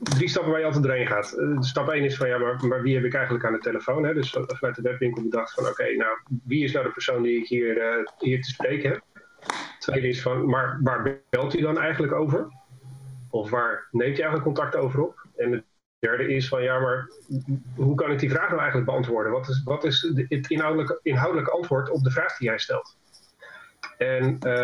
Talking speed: 210 wpm